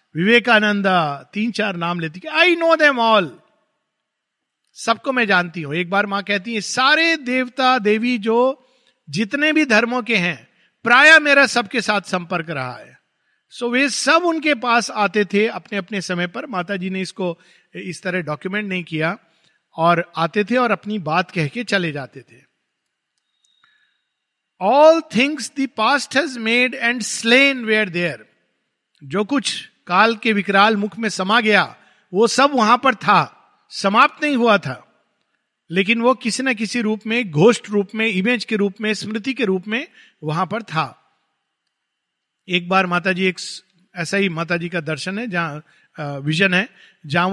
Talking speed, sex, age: 160 wpm, male, 50-69